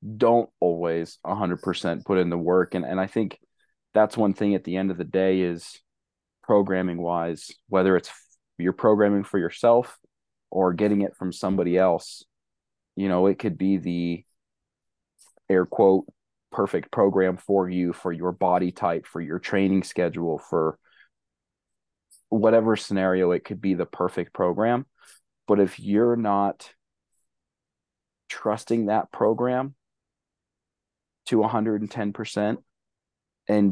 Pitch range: 90-105 Hz